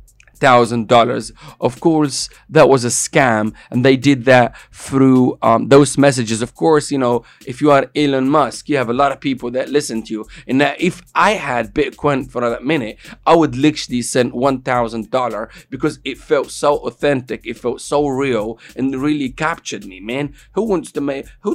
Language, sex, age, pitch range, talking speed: English, male, 30-49, 125-155 Hz, 195 wpm